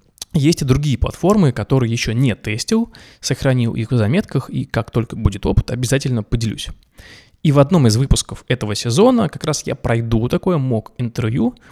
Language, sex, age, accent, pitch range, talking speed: Russian, male, 20-39, native, 115-145 Hz, 165 wpm